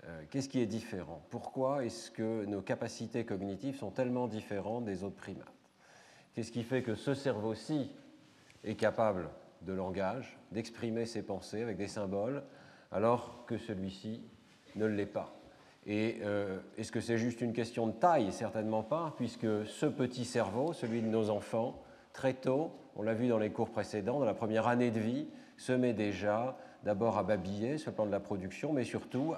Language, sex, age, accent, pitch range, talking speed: French, male, 40-59, French, 105-125 Hz, 175 wpm